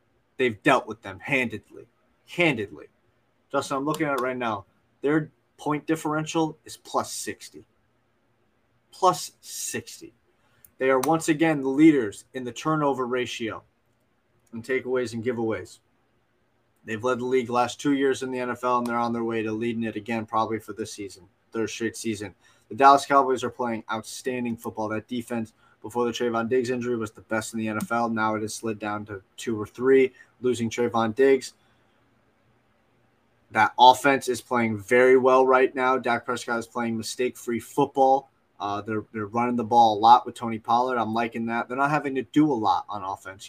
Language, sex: English, male